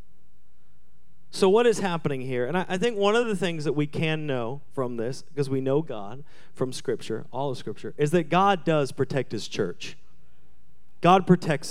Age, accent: 40-59, American